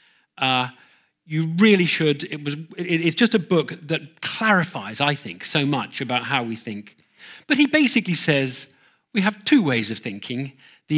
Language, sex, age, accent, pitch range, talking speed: English, male, 40-59, British, 130-185 Hz, 175 wpm